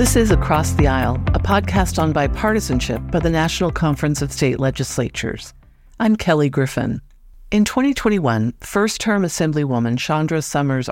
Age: 50-69